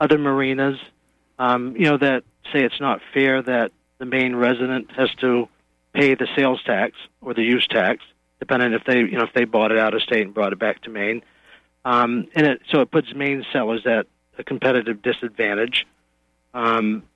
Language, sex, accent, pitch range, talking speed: English, male, American, 105-130 Hz, 190 wpm